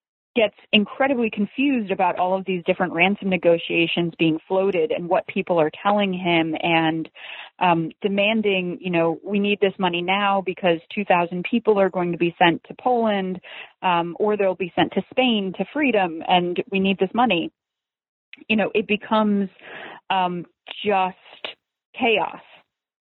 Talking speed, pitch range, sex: 155 wpm, 175-205 Hz, female